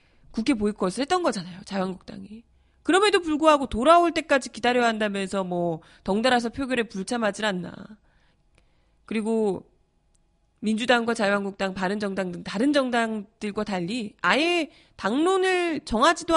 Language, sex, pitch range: Korean, female, 195-270 Hz